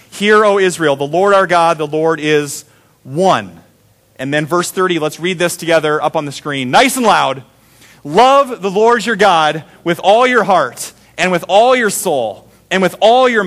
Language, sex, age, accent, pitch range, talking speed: English, male, 30-49, American, 115-170 Hz, 195 wpm